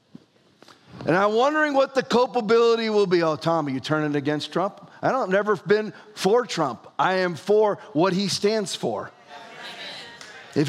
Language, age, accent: English, 40-59, American